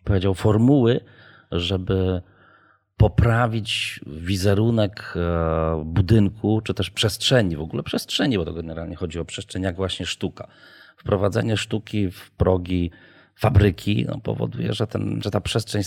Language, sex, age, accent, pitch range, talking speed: Polish, male, 40-59, native, 85-105 Hz, 125 wpm